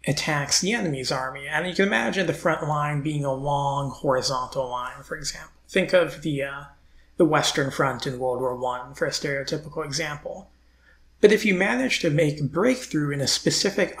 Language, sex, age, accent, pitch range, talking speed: English, male, 30-49, American, 130-165 Hz, 185 wpm